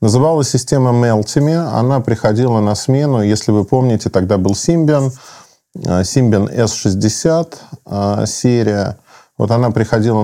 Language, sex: Russian, male